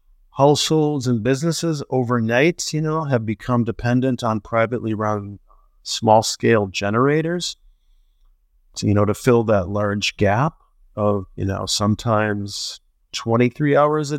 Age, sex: 50-69, male